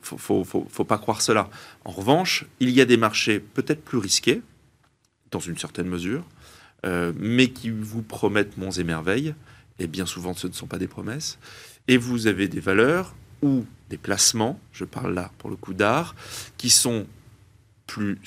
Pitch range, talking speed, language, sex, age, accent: 95-120 Hz, 185 wpm, French, male, 30-49, French